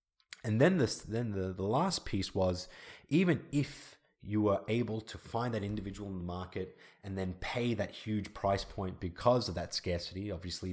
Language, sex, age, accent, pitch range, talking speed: English, male, 30-49, Australian, 90-105 Hz, 185 wpm